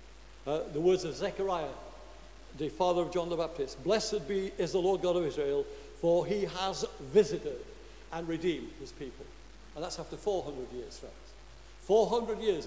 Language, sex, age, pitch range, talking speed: English, male, 60-79, 150-205 Hz, 165 wpm